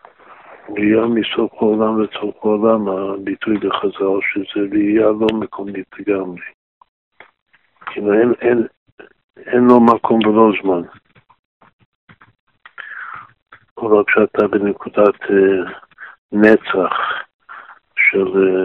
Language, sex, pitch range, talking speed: Hebrew, male, 95-110 Hz, 70 wpm